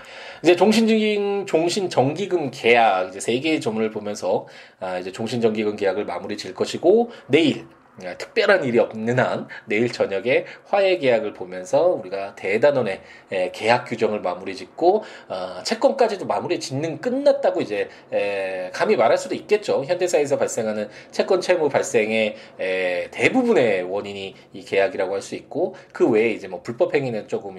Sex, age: male, 20-39